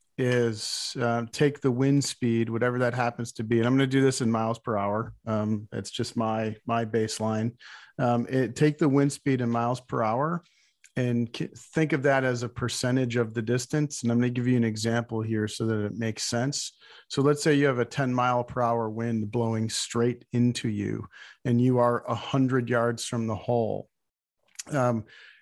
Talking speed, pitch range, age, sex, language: 205 wpm, 115-130 Hz, 40-59, male, English